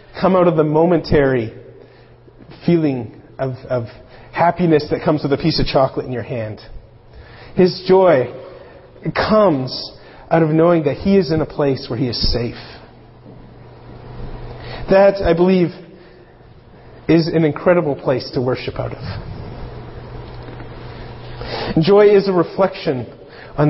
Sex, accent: male, American